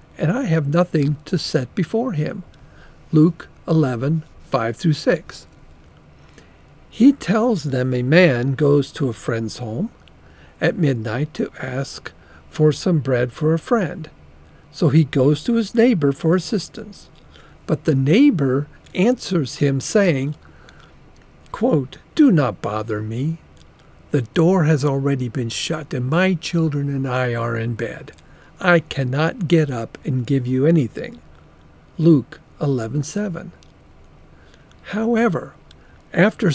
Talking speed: 125 wpm